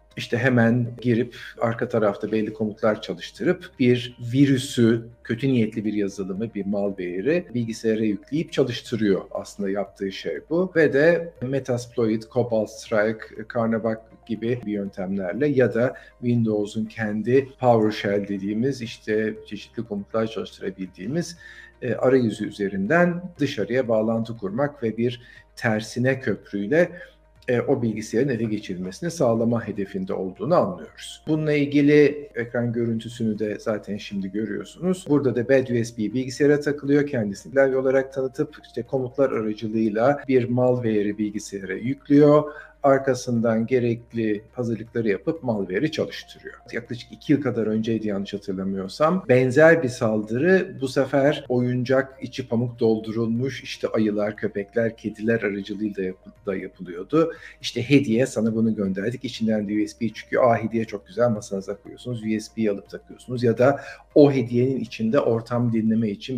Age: 50-69